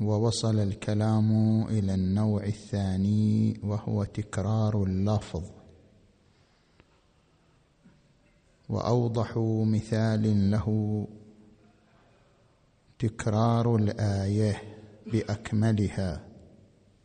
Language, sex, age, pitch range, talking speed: Arabic, male, 50-69, 105-115 Hz, 50 wpm